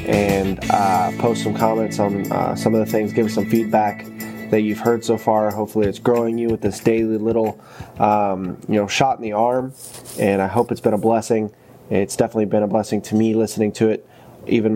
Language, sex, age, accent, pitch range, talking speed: English, male, 20-39, American, 105-120 Hz, 215 wpm